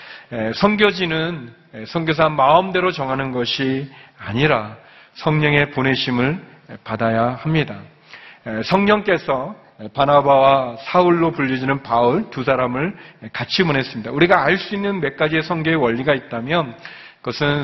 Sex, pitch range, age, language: male, 130-180 Hz, 40-59, Korean